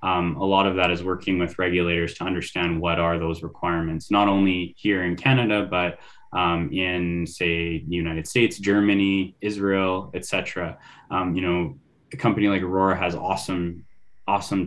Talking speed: 165 wpm